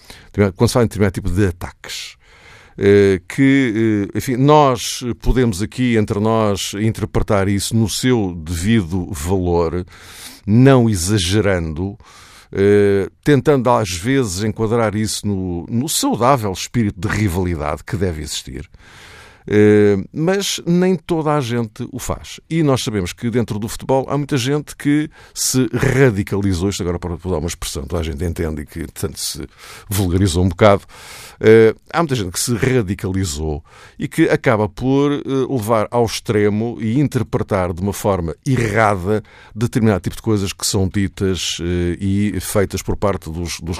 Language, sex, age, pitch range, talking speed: Portuguese, male, 50-69, 95-125 Hz, 140 wpm